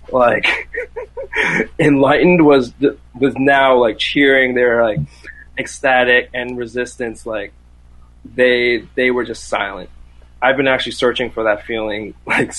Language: English